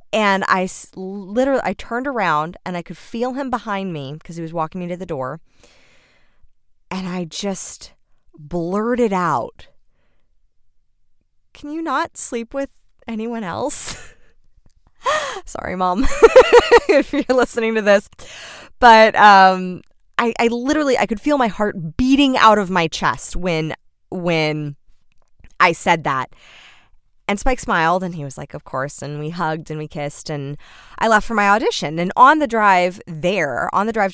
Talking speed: 155 wpm